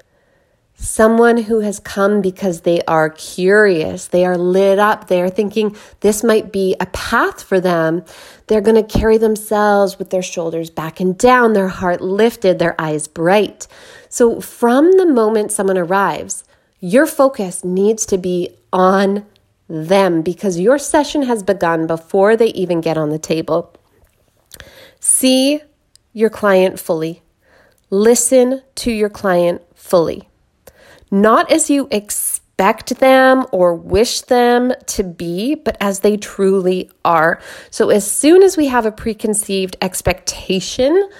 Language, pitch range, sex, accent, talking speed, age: English, 180-225 Hz, female, American, 140 wpm, 30-49